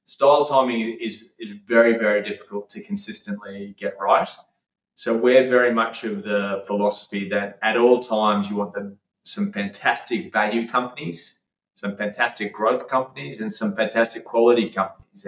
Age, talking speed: 20-39, 150 wpm